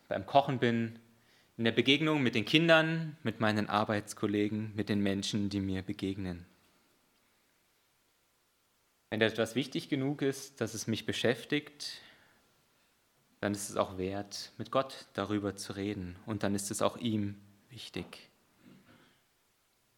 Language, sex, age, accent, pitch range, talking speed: German, male, 30-49, German, 105-130 Hz, 130 wpm